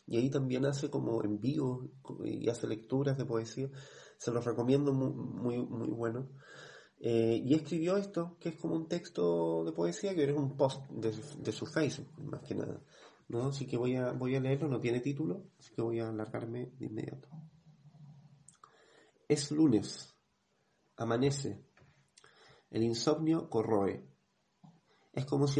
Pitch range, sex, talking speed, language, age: 115-140 Hz, male, 160 wpm, English, 30-49